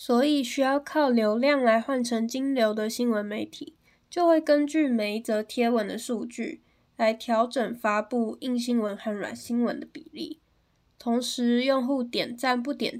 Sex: female